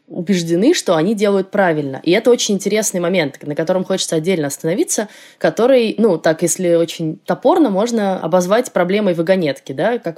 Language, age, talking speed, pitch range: Russian, 20-39, 160 wpm, 160-195 Hz